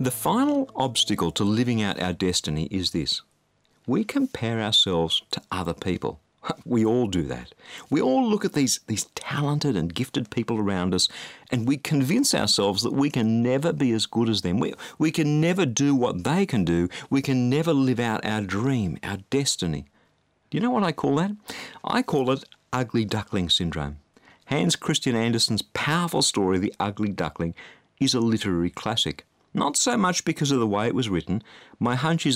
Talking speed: 185 wpm